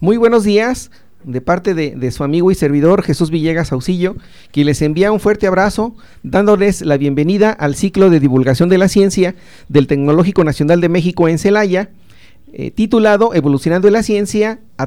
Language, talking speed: Spanish, 175 wpm